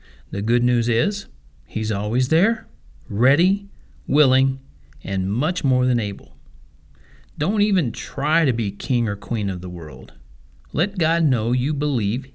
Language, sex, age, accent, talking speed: English, male, 50-69, American, 145 wpm